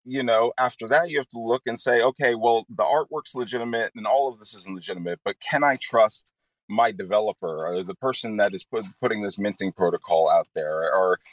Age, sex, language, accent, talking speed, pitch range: 30-49, male, English, American, 205 wpm, 95-120 Hz